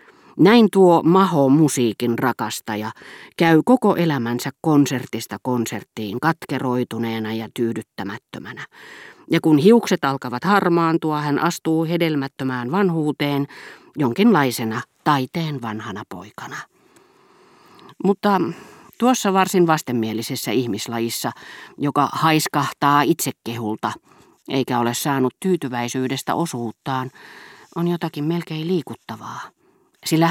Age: 40-59